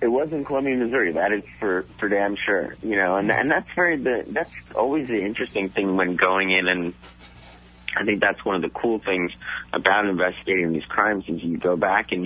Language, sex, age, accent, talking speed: English, male, 30-49, American, 215 wpm